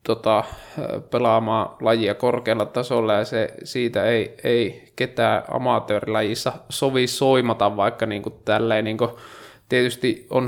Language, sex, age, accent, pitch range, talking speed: Finnish, male, 20-39, native, 115-130 Hz, 115 wpm